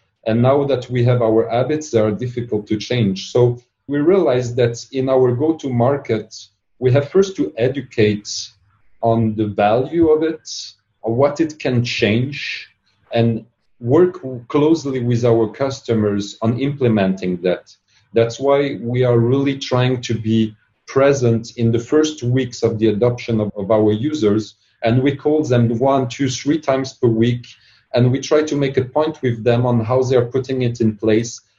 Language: English